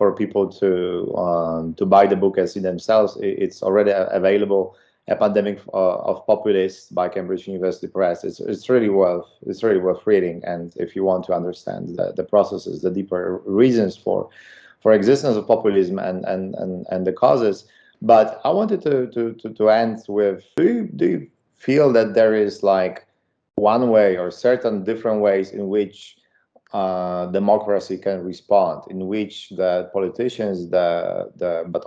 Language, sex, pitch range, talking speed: English, male, 95-115 Hz, 170 wpm